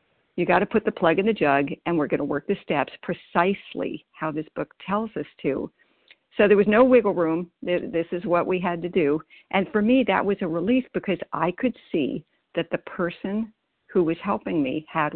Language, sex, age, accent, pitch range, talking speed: English, female, 60-79, American, 150-200 Hz, 220 wpm